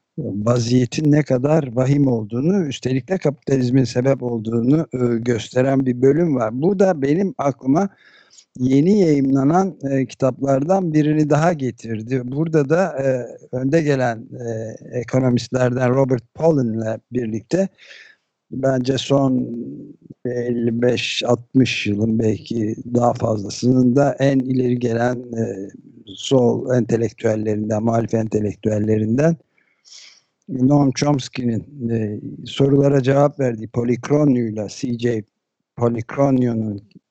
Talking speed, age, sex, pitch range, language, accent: 90 wpm, 60-79, male, 120-145 Hz, Turkish, native